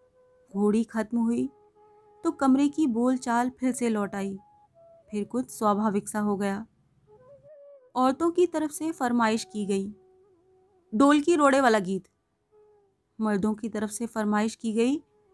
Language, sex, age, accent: Hindi, female, 30-49, native